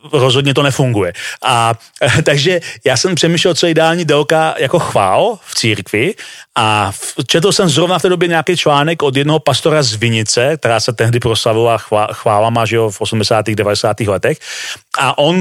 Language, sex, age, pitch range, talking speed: Slovak, male, 40-59, 120-165 Hz, 170 wpm